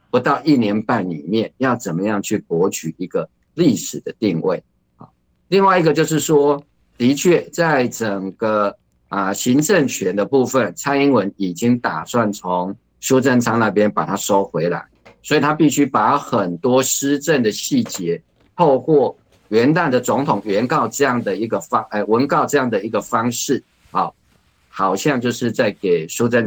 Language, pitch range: Chinese, 95-130 Hz